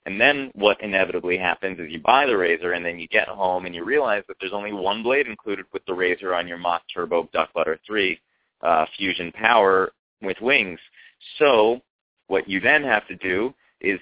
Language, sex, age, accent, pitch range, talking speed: English, male, 30-49, American, 90-115 Hz, 200 wpm